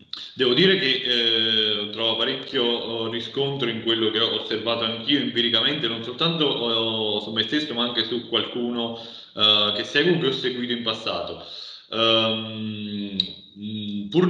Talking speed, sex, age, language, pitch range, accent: 145 wpm, male, 30-49, Italian, 105-130 Hz, native